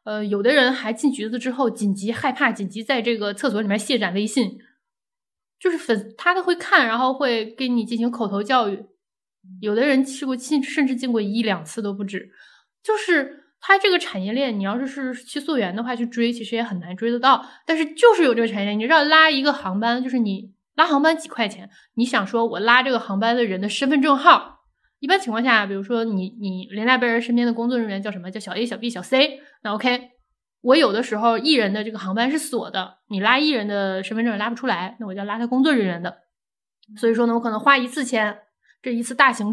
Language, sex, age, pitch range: Chinese, female, 20-39, 210-260 Hz